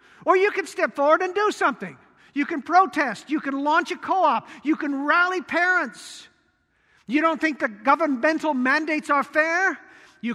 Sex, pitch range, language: male, 265-335 Hz, English